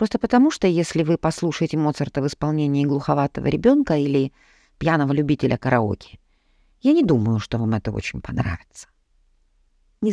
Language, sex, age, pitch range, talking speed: Italian, female, 50-69, 110-185 Hz, 140 wpm